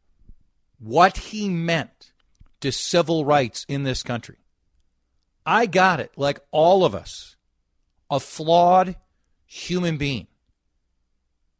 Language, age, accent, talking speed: English, 50-69, American, 105 wpm